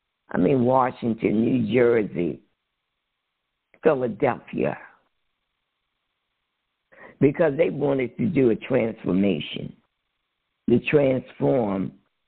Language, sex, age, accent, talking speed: English, female, 60-79, American, 75 wpm